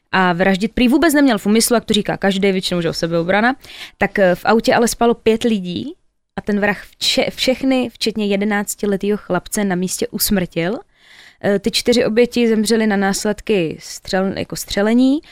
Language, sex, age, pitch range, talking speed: Czech, female, 20-39, 195-235 Hz, 170 wpm